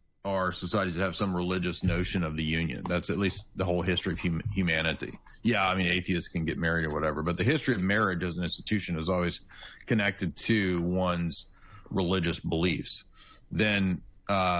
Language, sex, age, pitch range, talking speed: English, male, 40-59, 85-100 Hz, 180 wpm